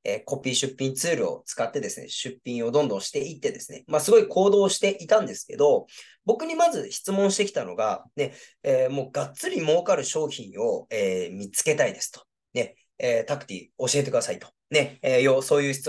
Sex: male